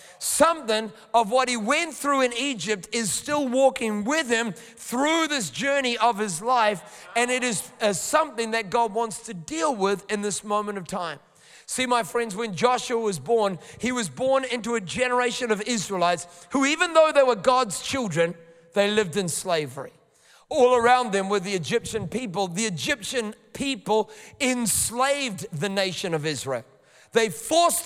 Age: 30-49